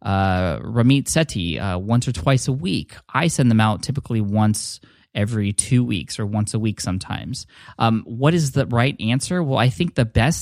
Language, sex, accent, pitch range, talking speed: English, male, American, 100-125 Hz, 195 wpm